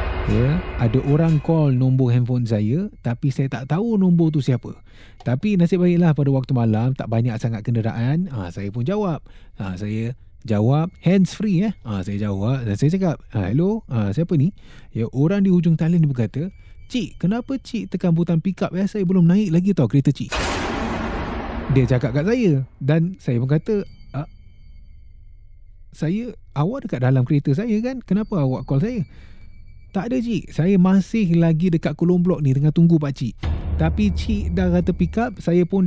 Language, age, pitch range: Malay, 30-49, 120-180 Hz